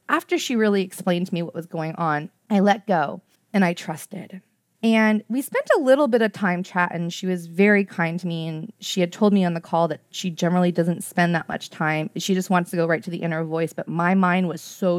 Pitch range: 175-205 Hz